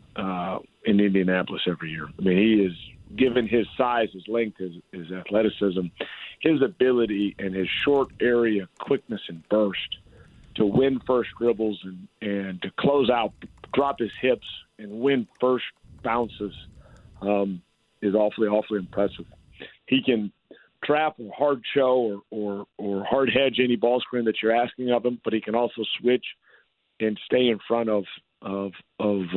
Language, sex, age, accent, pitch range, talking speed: English, male, 50-69, American, 100-120 Hz, 160 wpm